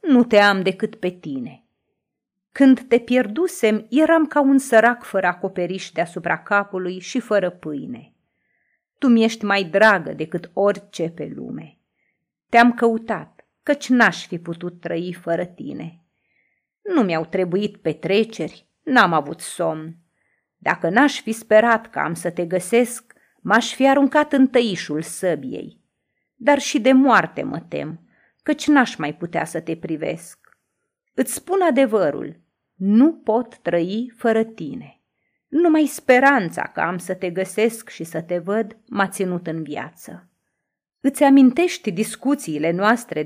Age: 30-49